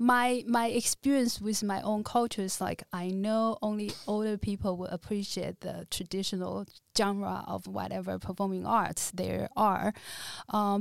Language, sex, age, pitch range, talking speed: English, female, 20-39, 185-215 Hz, 145 wpm